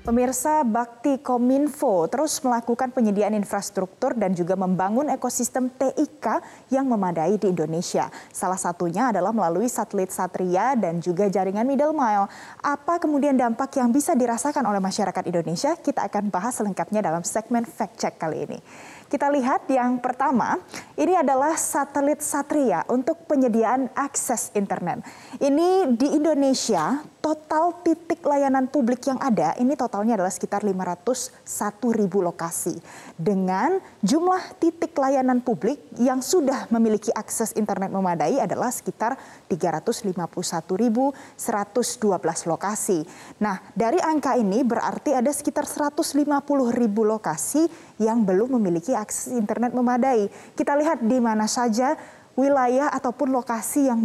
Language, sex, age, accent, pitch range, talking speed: Indonesian, female, 20-39, native, 205-280 Hz, 125 wpm